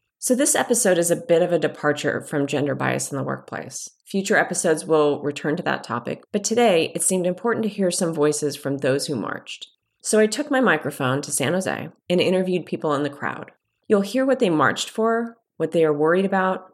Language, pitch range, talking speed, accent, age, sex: English, 155-200 Hz, 215 wpm, American, 30-49, female